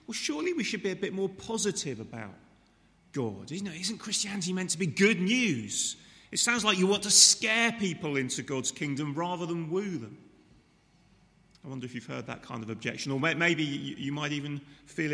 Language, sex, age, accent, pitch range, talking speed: English, male, 30-49, British, 130-190 Hz, 195 wpm